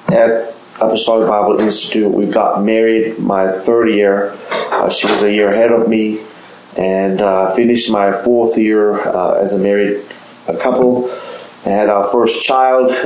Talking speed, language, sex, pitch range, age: 160 wpm, English, male, 105-125 Hz, 20-39